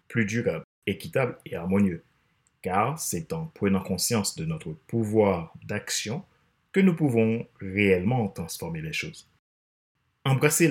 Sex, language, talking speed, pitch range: male, French, 125 wpm, 95-150 Hz